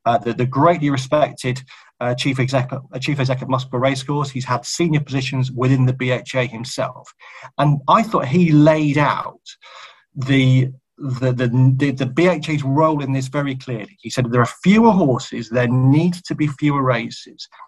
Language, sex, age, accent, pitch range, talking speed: English, male, 40-59, British, 130-160 Hz, 170 wpm